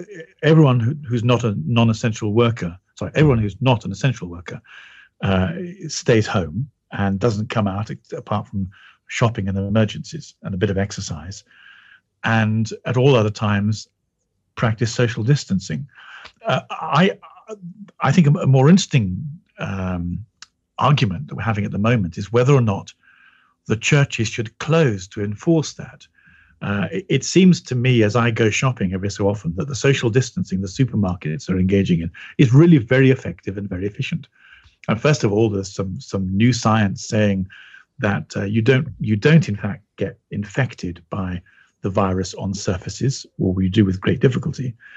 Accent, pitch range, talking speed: British, 100-135 Hz, 165 wpm